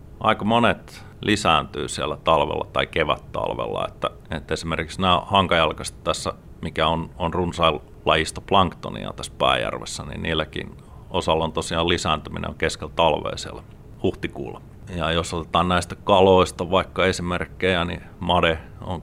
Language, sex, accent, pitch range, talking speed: Finnish, male, native, 80-95 Hz, 125 wpm